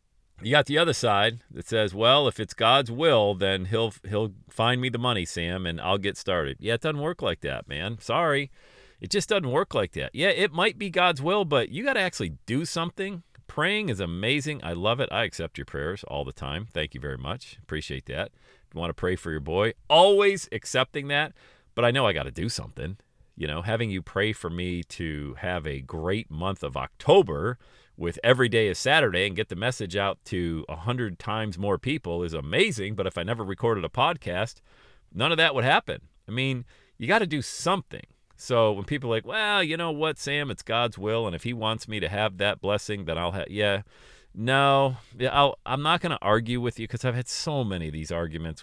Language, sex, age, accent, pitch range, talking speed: English, male, 40-59, American, 90-135 Hz, 225 wpm